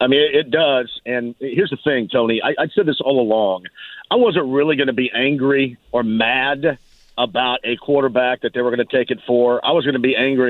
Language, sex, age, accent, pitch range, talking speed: English, male, 50-69, American, 120-140 Hz, 235 wpm